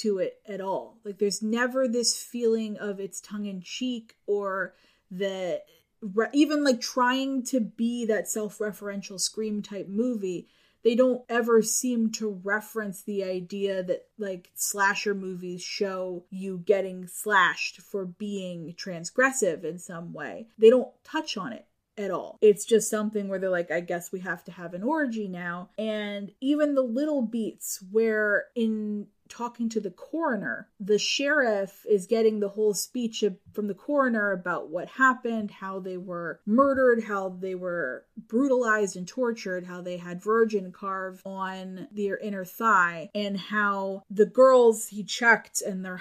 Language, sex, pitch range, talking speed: English, female, 190-230 Hz, 155 wpm